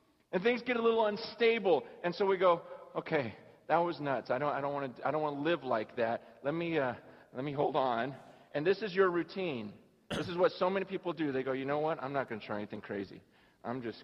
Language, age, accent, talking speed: English, 40-59, American, 240 wpm